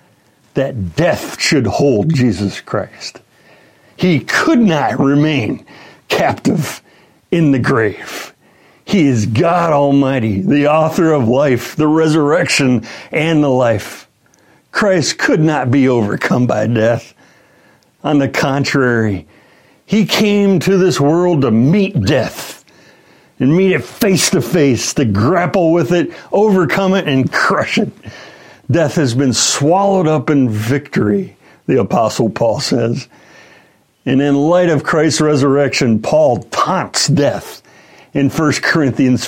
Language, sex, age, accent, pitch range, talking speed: English, male, 60-79, American, 125-170 Hz, 125 wpm